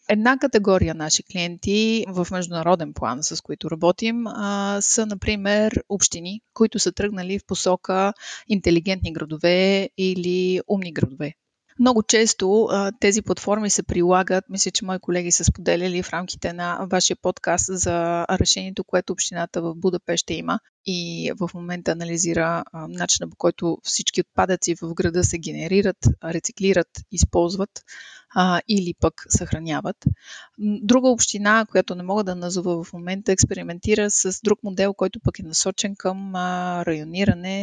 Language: Bulgarian